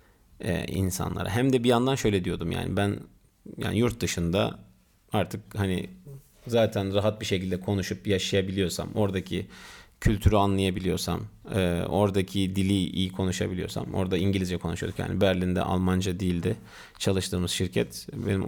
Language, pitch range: Turkish, 95-115 Hz